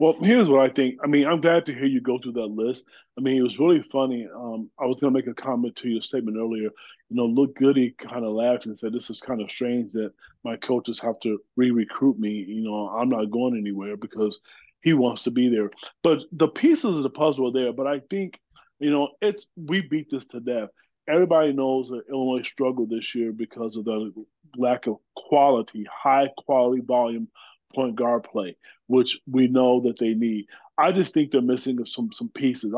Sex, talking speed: male, 215 wpm